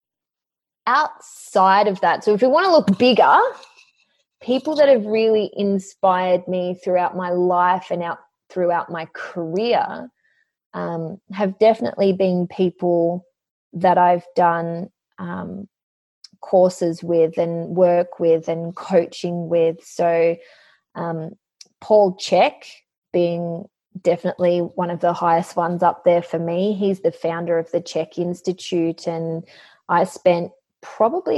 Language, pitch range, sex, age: English, 170-195 Hz, female, 20-39